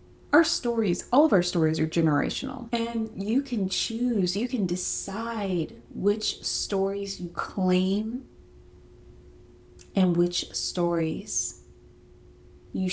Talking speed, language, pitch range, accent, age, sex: 105 wpm, English, 175-220 Hz, American, 30-49, female